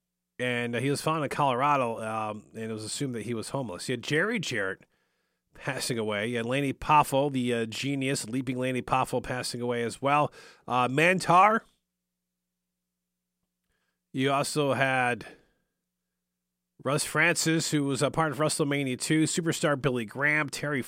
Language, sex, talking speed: English, male, 150 wpm